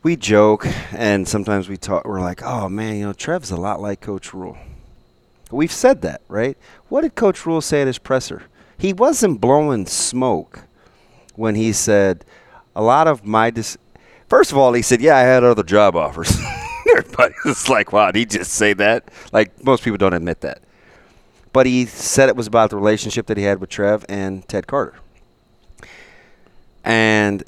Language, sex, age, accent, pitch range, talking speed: English, male, 30-49, American, 100-125 Hz, 180 wpm